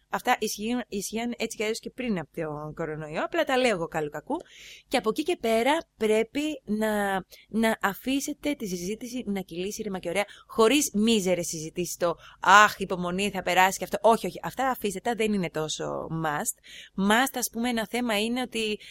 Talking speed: 175 wpm